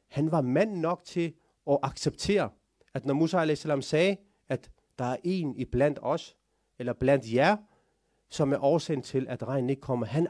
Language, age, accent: Danish, 30-49, native